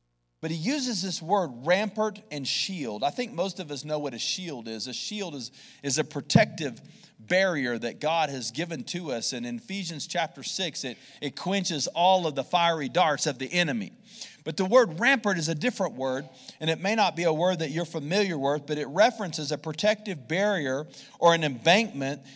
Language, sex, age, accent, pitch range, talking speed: English, male, 40-59, American, 150-215 Hz, 200 wpm